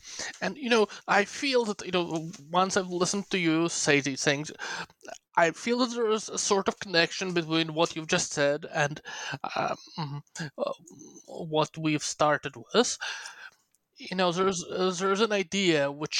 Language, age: English, 20-39